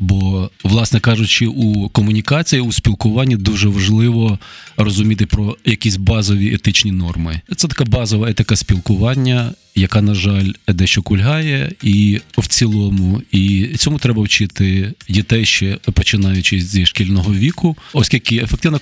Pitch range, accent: 100-120 Hz, native